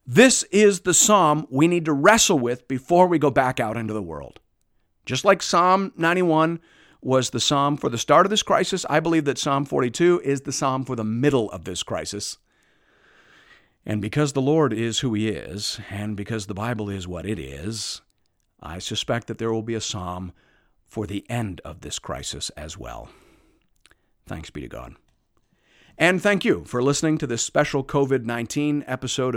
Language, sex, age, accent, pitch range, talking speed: English, male, 50-69, American, 115-155 Hz, 185 wpm